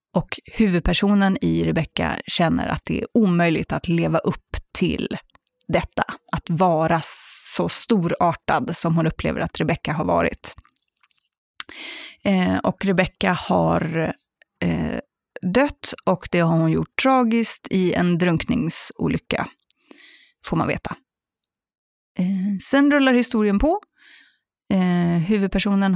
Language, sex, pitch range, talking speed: English, female, 170-240 Hz, 115 wpm